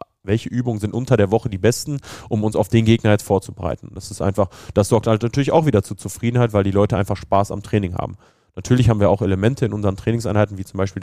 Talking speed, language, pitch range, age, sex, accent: 245 wpm, German, 95-115 Hz, 30-49, male, German